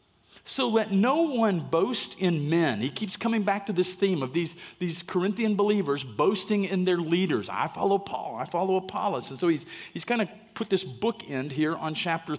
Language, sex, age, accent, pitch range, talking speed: English, male, 50-69, American, 160-205 Hz, 200 wpm